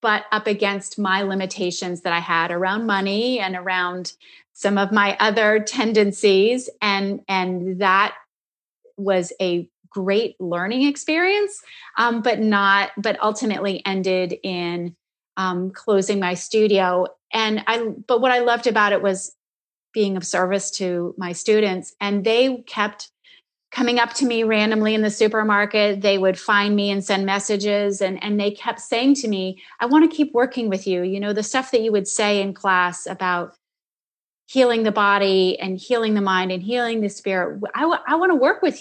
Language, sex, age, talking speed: English, female, 30-49, 170 wpm